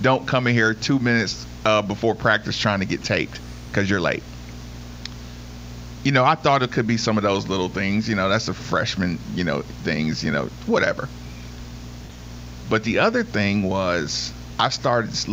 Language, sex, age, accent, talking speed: English, male, 50-69, American, 185 wpm